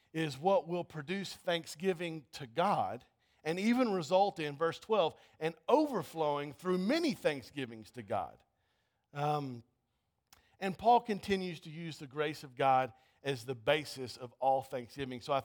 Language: English